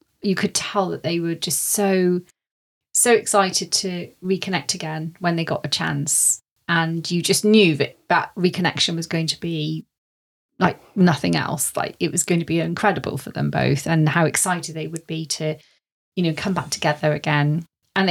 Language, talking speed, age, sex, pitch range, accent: English, 185 wpm, 30-49, female, 160-195 Hz, British